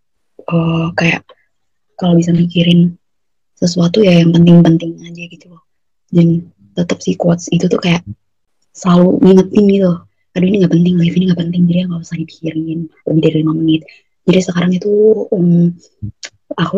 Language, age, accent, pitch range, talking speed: Indonesian, 20-39, native, 160-185 Hz, 155 wpm